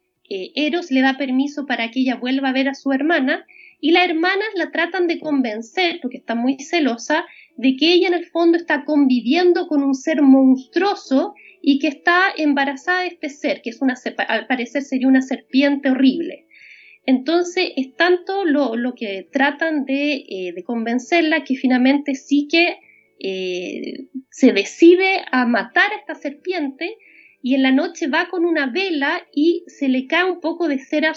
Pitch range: 265-345 Hz